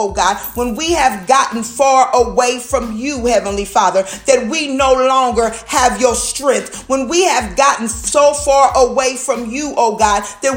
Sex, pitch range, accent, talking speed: female, 240-295 Hz, American, 175 wpm